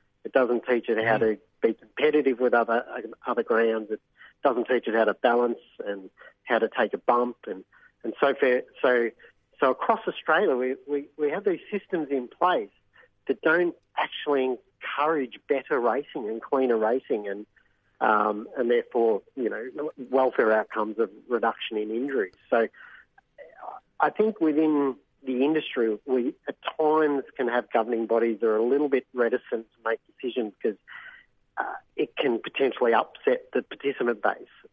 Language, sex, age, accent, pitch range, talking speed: English, male, 50-69, Australian, 115-135 Hz, 160 wpm